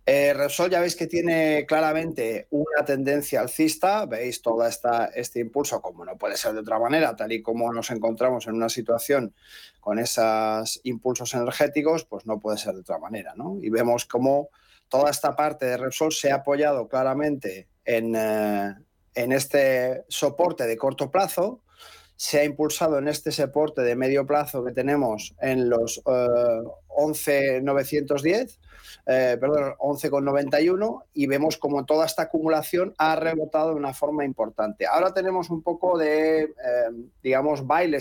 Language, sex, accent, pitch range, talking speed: Spanish, male, Spanish, 125-160 Hz, 160 wpm